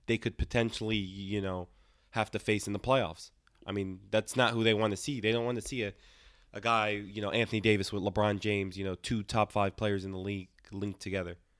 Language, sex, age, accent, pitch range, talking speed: English, male, 20-39, American, 100-120 Hz, 240 wpm